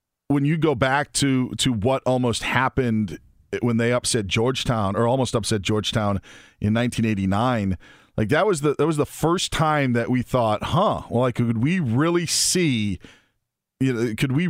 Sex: male